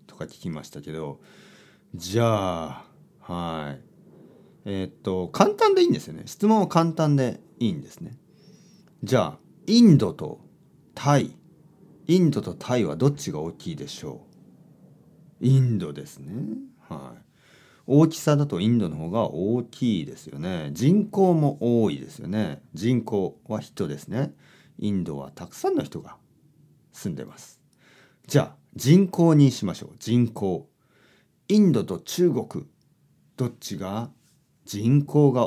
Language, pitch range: Japanese, 95-145 Hz